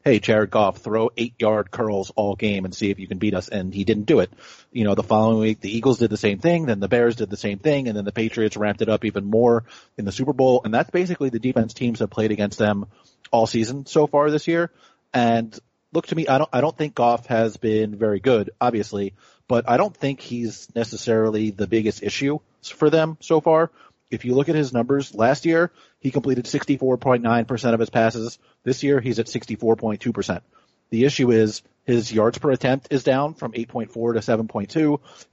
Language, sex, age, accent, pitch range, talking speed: English, male, 30-49, American, 110-130 Hz, 215 wpm